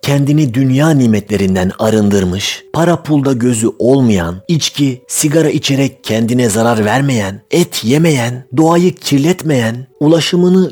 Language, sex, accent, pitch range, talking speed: Turkish, male, native, 125-175 Hz, 105 wpm